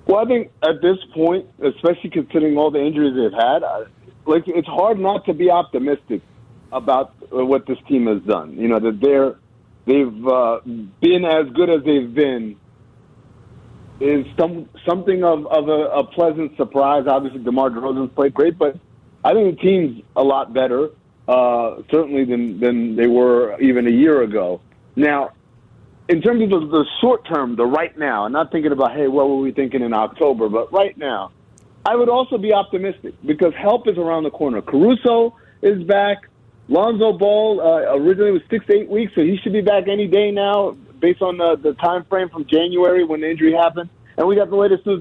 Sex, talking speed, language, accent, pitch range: male, 190 wpm, English, American, 135-190 Hz